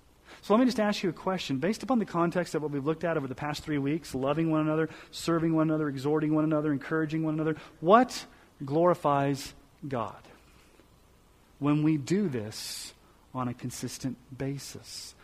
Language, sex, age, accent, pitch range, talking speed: English, male, 40-59, American, 140-195 Hz, 175 wpm